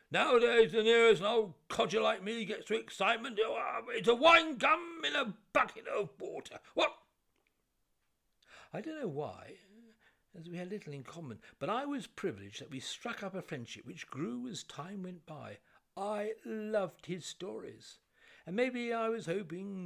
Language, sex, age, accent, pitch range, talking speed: English, male, 60-79, British, 155-225 Hz, 165 wpm